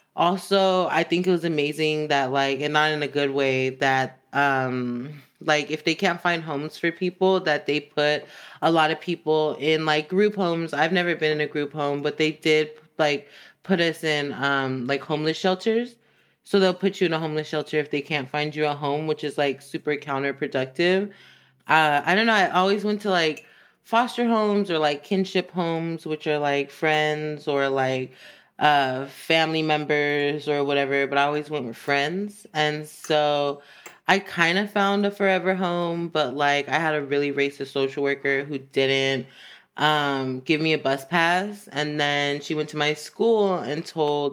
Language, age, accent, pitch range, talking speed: English, 30-49, American, 140-165 Hz, 190 wpm